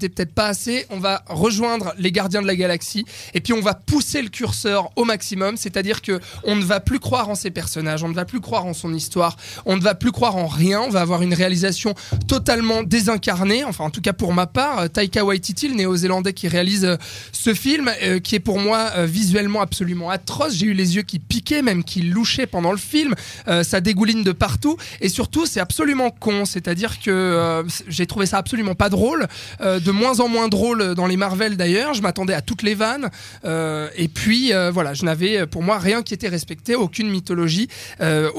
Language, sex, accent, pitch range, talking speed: French, male, French, 180-225 Hz, 210 wpm